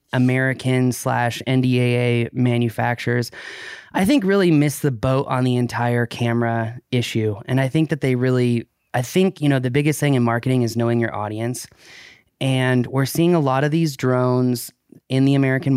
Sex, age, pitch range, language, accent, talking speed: male, 20-39, 120-145 Hz, English, American, 170 wpm